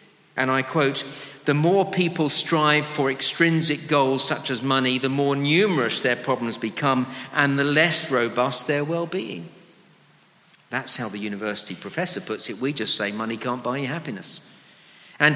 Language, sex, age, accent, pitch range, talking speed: English, male, 50-69, British, 120-160 Hz, 160 wpm